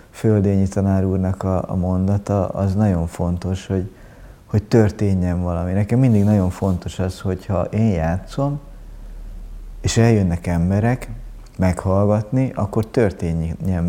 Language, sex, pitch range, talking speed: Hungarian, male, 90-105 Hz, 115 wpm